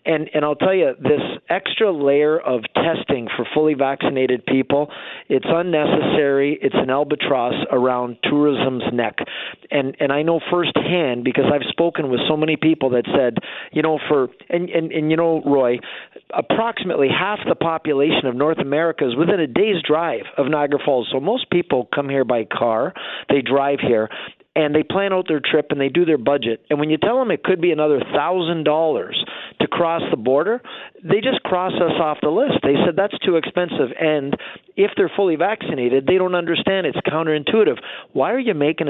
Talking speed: 185 wpm